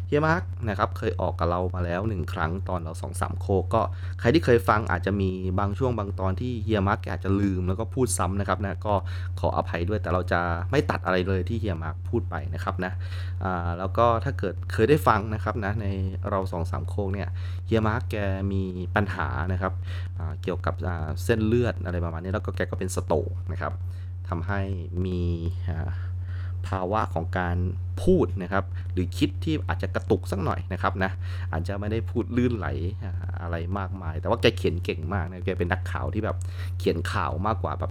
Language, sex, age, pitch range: Thai, male, 20-39, 90-100 Hz